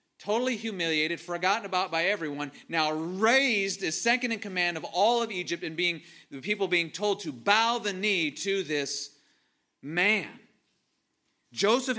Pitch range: 165-220 Hz